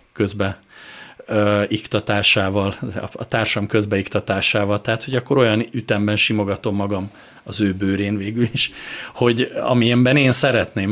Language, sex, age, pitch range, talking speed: Hungarian, male, 30-49, 105-125 Hz, 110 wpm